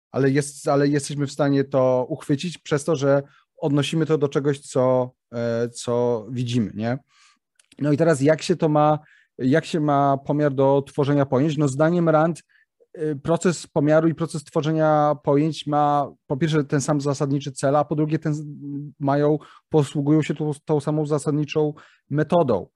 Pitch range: 135-160 Hz